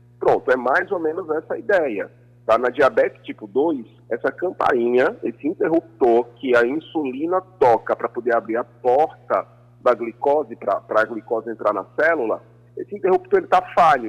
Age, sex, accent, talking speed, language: 40-59, male, Brazilian, 160 wpm, Portuguese